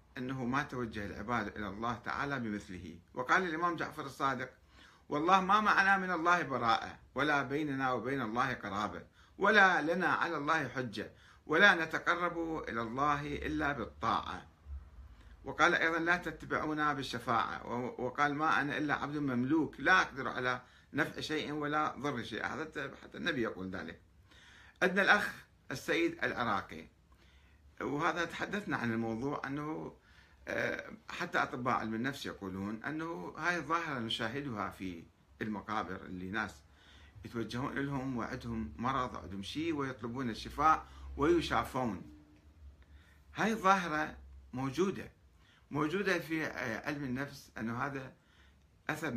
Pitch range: 95-150 Hz